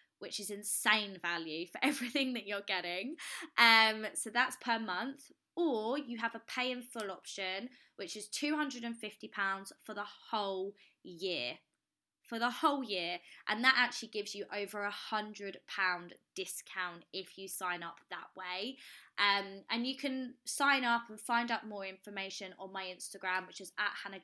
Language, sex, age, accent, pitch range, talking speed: English, female, 20-39, British, 190-235 Hz, 165 wpm